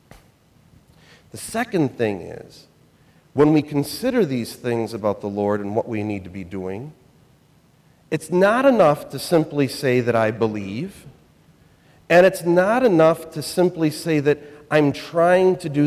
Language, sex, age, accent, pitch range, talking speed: English, male, 40-59, American, 130-190 Hz, 150 wpm